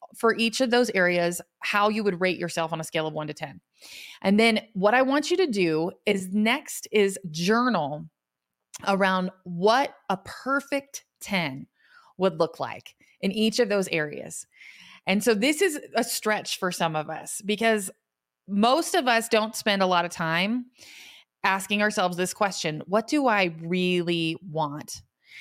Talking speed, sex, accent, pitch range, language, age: 170 wpm, female, American, 175-235 Hz, English, 30-49